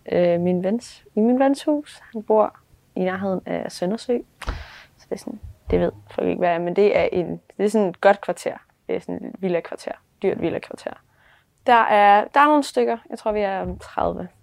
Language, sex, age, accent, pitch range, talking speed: Danish, female, 20-39, native, 180-220 Hz, 225 wpm